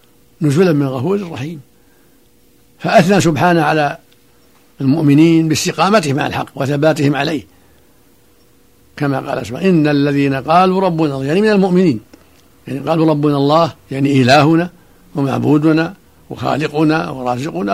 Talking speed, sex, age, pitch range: 110 wpm, male, 60-79, 135-170 Hz